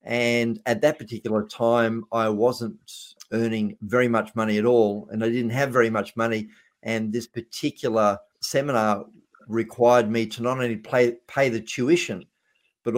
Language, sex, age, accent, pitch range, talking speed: English, male, 50-69, Australian, 115-130 Hz, 155 wpm